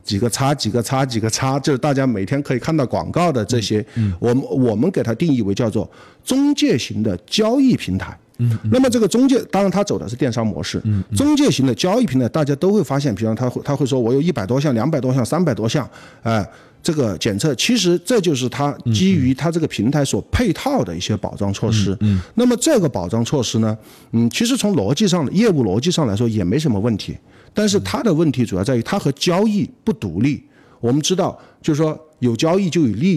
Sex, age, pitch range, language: male, 50-69, 110-170 Hz, Chinese